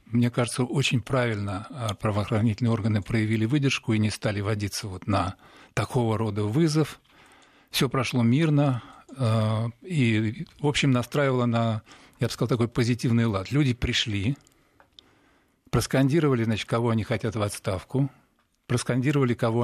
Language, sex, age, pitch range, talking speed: Russian, male, 40-59, 110-130 Hz, 125 wpm